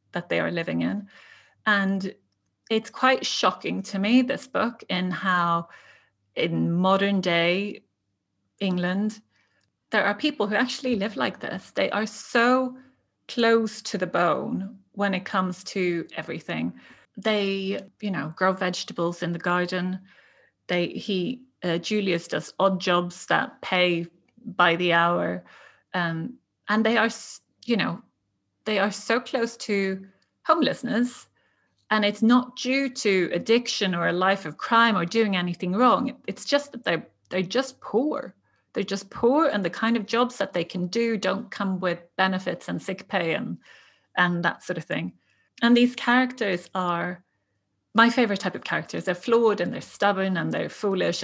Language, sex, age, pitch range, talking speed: English, female, 30-49, 180-230 Hz, 160 wpm